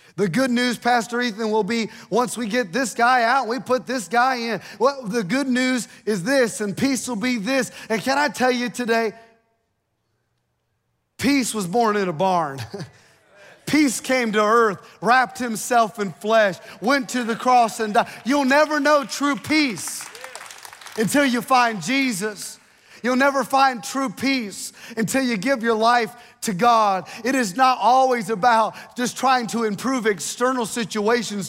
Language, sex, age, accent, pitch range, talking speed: English, male, 30-49, American, 225-265 Hz, 165 wpm